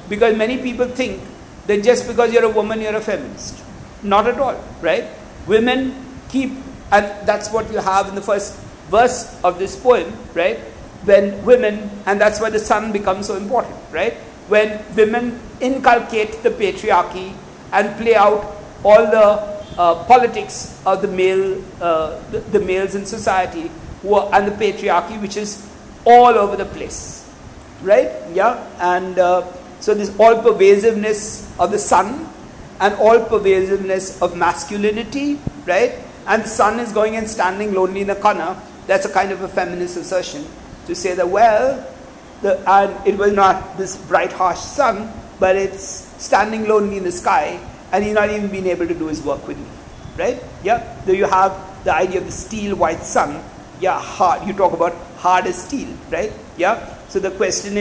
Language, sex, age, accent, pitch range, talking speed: English, male, 60-79, Indian, 190-220 Hz, 170 wpm